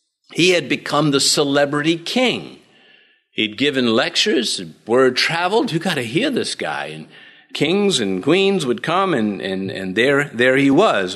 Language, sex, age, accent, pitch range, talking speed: English, male, 50-69, American, 130-200 Hz, 155 wpm